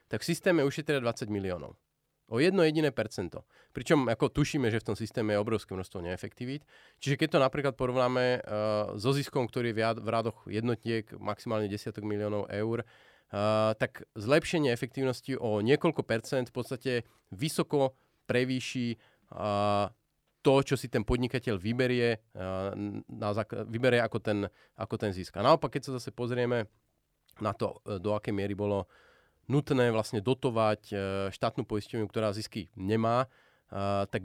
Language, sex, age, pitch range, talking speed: Slovak, male, 30-49, 105-135 Hz, 150 wpm